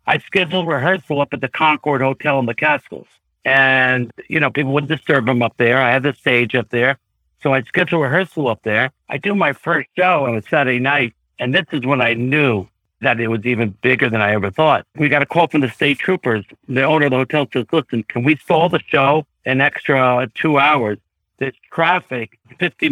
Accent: American